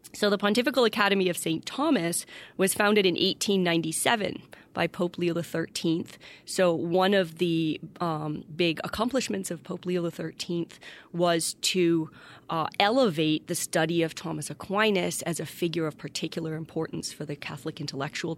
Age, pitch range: 30-49, 155-180 Hz